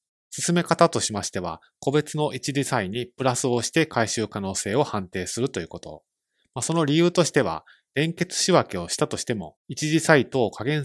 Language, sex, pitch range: Japanese, male, 110-150 Hz